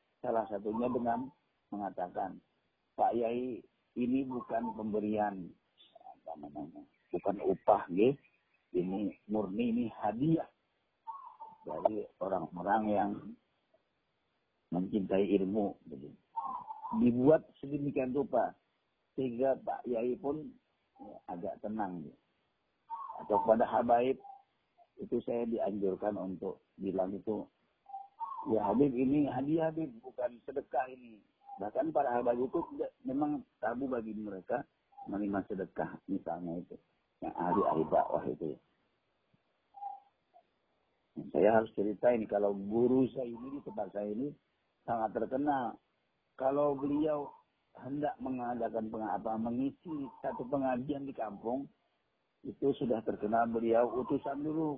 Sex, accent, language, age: male, native, Indonesian, 50-69